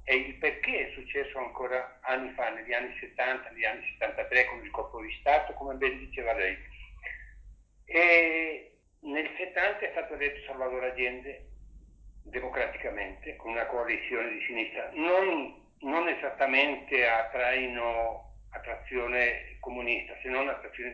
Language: Italian